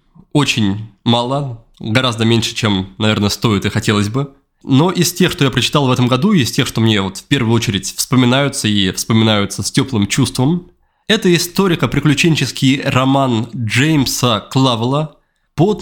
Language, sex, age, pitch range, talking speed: Russian, male, 20-39, 115-150 Hz, 145 wpm